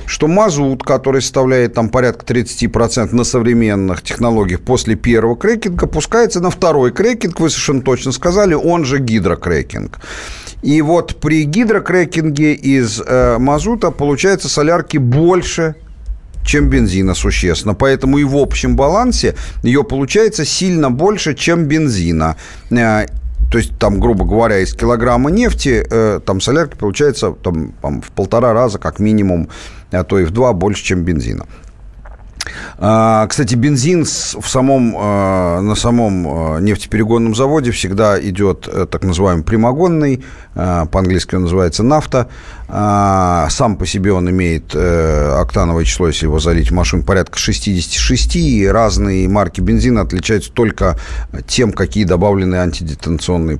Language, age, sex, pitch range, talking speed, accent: Russian, 40-59, male, 95-145 Hz, 130 wpm, native